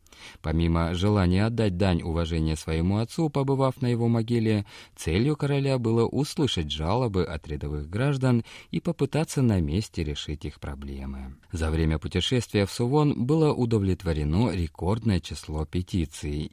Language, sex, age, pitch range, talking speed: Russian, male, 30-49, 80-120 Hz, 130 wpm